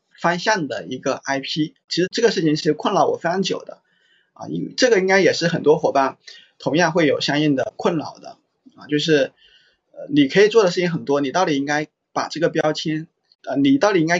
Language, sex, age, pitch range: Chinese, male, 20-39, 140-180 Hz